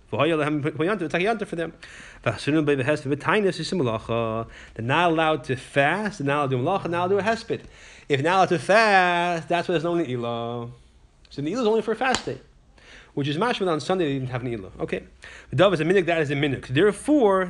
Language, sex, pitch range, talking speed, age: English, male, 130-180 Hz, 200 wpm, 30-49